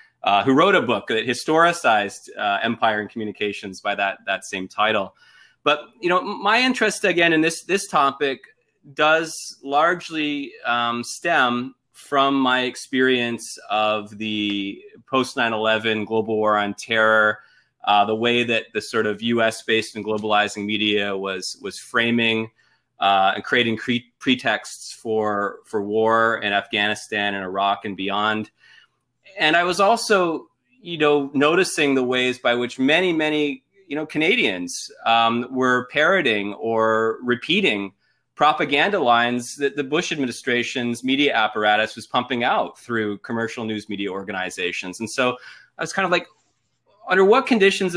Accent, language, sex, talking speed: American, English, male, 145 wpm